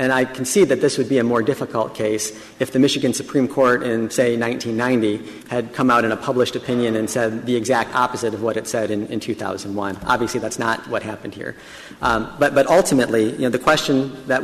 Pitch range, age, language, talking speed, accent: 115-135 Hz, 40-59, English, 225 wpm, American